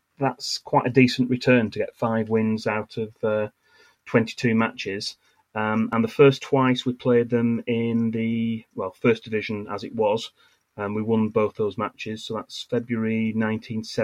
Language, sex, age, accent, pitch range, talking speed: English, male, 30-49, British, 105-120 Hz, 165 wpm